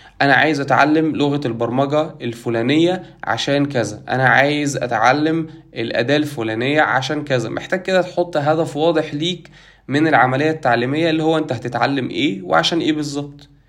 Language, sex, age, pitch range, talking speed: Arabic, male, 20-39, 130-170 Hz, 140 wpm